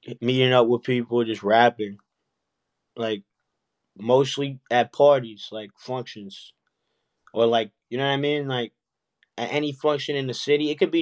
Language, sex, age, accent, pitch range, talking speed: English, male, 20-39, American, 115-135 Hz, 160 wpm